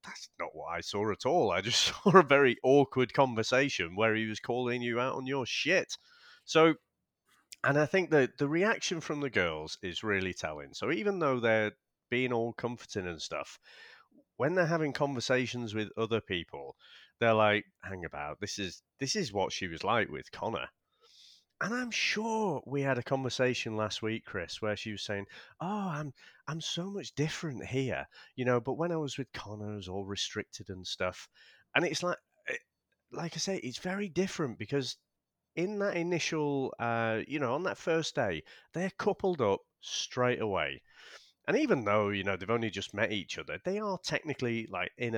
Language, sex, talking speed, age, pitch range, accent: English, male, 190 wpm, 30-49, 110-165 Hz, British